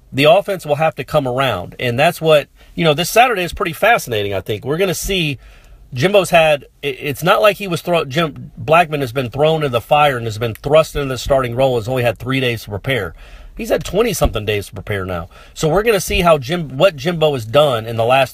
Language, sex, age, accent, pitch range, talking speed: English, male, 40-59, American, 115-150 Hz, 245 wpm